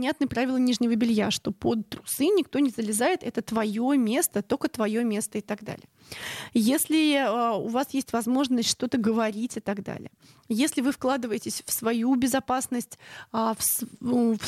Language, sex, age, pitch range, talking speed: Russian, female, 20-39, 220-280 Hz, 150 wpm